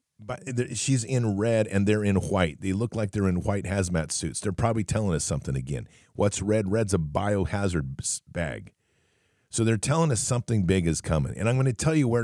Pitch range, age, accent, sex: 100-130 Hz, 50-69, American, male